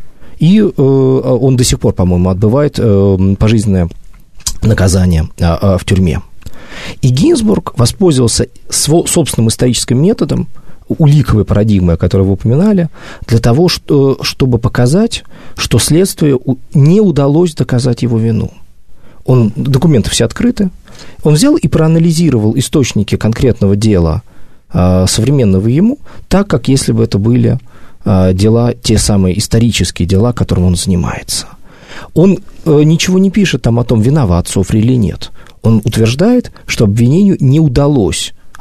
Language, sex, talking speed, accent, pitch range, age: Russian, male, 120 wpm, native, 95-145 Hz, 40-59